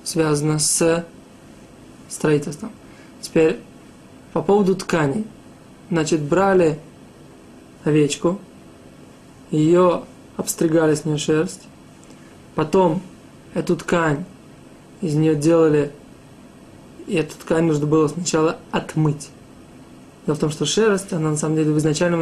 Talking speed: 105 wpm